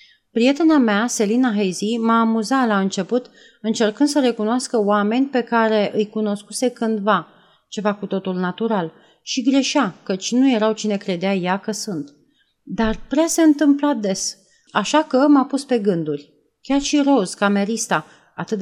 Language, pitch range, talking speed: Romanian, 175-245 Hz, 150 wpm